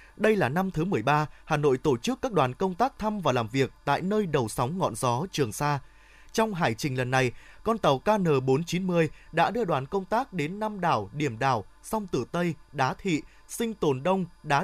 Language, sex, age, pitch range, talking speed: Vietnamese, male, 20-39, 145-195 Hz, 215 wpm